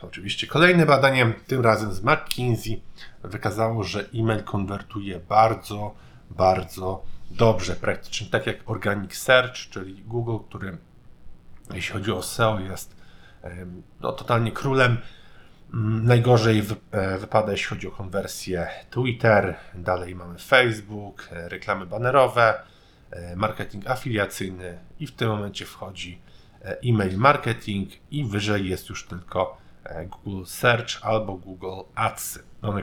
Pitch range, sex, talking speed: 95-115 Hz, male, 115 wpm